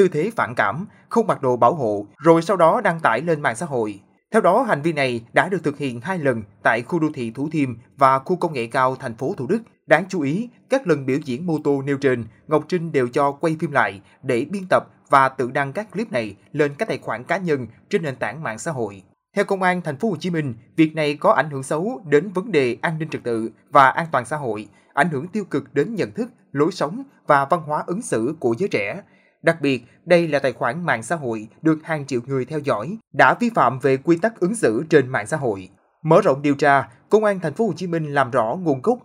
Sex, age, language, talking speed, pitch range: male, 20-39, Vietnamese, 250 wpm, 130-175 Hz